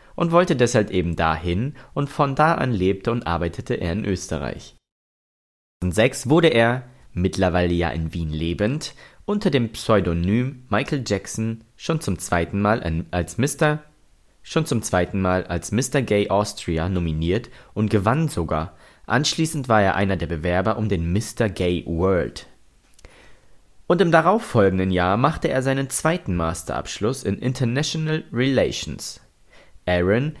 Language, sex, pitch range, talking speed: German, male, 90-130 Hz, 140 wpm